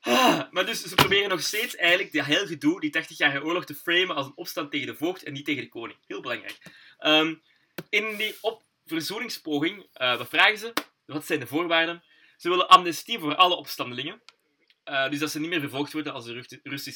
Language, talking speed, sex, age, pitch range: Dutch, 200 wpm, male, 20-39, 135-175 Hz